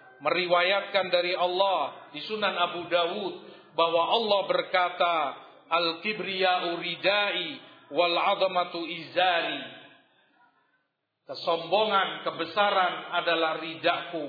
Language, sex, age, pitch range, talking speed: Indonesian, male, 50-69, 160-195 Hz, 80 wpm